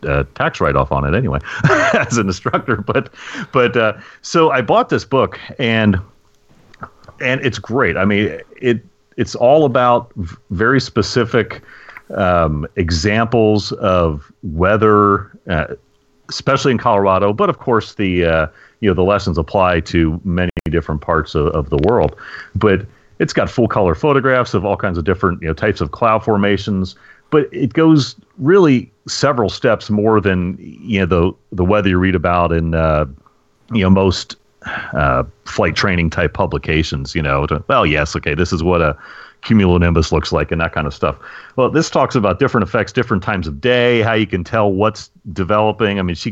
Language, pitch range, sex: English, 85-110 Hz, male